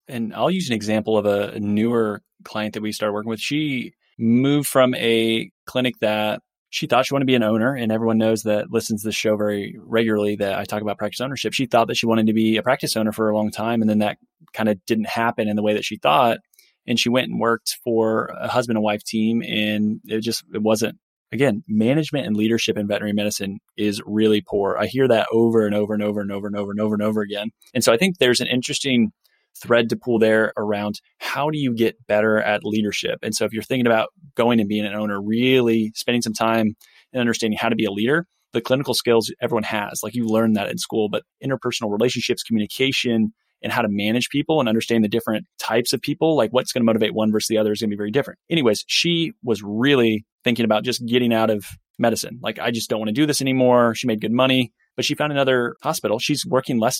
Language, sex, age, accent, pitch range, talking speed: English, male, 20-39, American, 105-125 Hz, 240 wpm